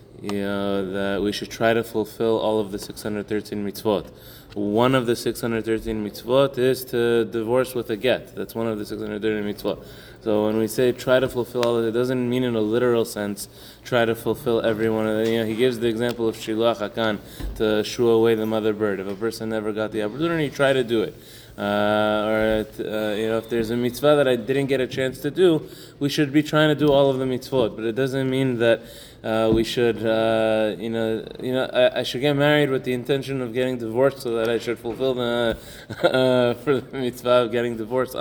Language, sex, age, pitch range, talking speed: English, male, 20-39, 110-125 Hz, 220 wpm